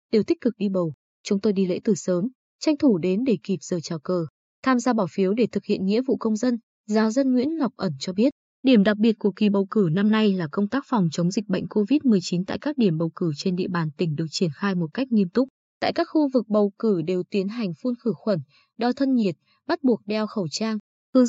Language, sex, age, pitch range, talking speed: Vietnamese, female, 20-39, 185-245 Hz, 255 wpm